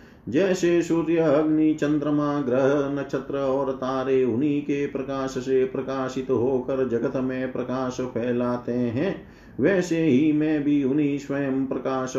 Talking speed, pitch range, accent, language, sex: 130 wpm, 130-155 Hz, native, Hindi, male